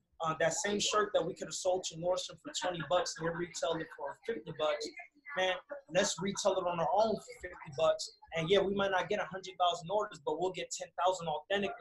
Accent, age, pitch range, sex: American, 20-39, 160-190 Hz, male